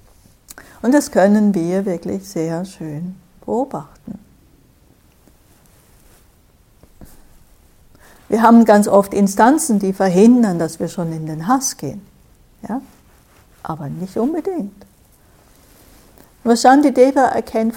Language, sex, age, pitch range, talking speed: English, female, 60-79, 175-225 Hz, 90 wpm